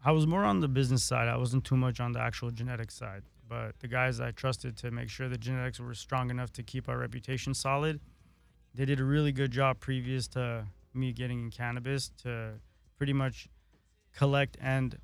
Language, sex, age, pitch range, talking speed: English, male, 20-39, 115-130 Hz, 205 wpm